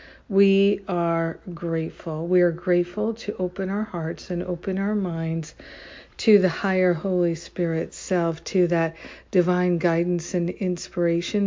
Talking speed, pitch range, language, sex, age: 135 wpm, 170-190 Hz, English, female, 60-79